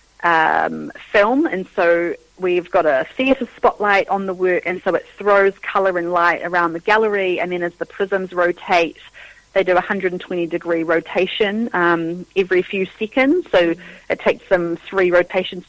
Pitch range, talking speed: 175-210 Hz, 170 wpm